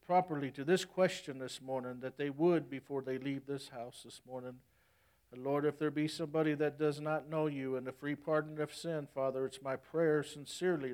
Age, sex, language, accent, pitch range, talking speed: 60-79, male, English, American, 130-160 Hz, 210 wpm